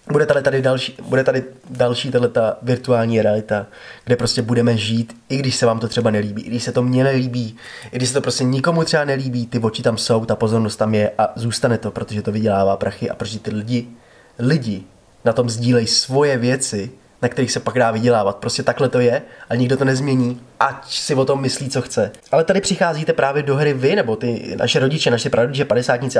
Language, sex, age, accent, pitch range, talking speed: Czech, male, 20-39, native, 120-145 Hz, 220 wpm